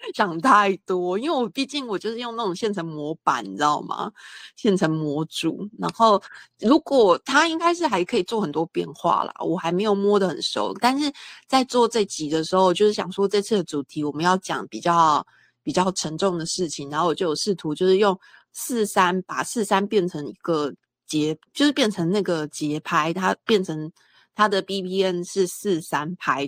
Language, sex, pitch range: Chinese, female, 170-220 Hz